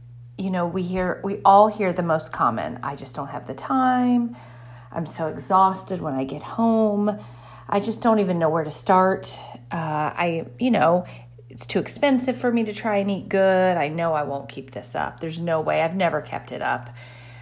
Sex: female